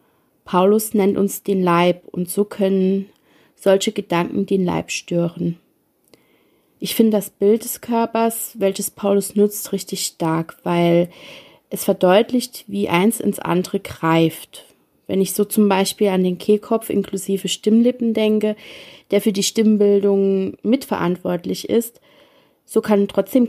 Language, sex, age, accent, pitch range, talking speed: German, female, 30-49, German, 185-210 Hz, 135 wpm